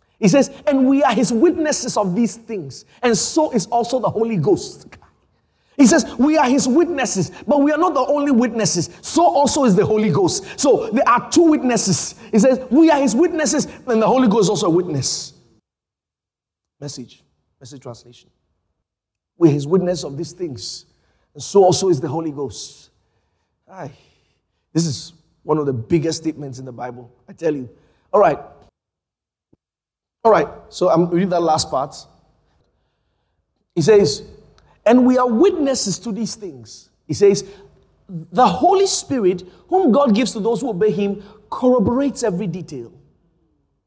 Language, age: English, 30-49